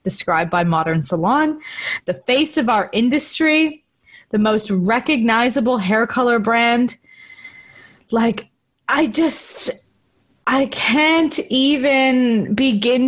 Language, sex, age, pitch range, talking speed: English, female, 20-39, 195-240 Hz, 100 wpm